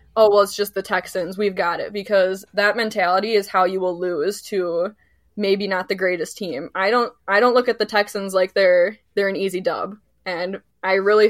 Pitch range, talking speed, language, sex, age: 185-205 Hz, 210 wpm, English, female, 10-29